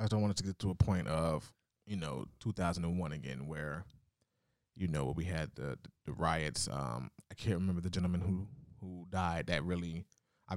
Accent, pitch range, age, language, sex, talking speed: American, 85-95 Hz, 20-39, English, male, 195 wpm